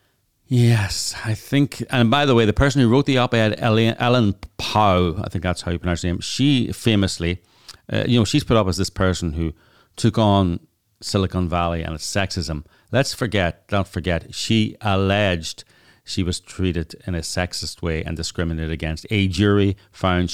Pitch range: 90-110 Hz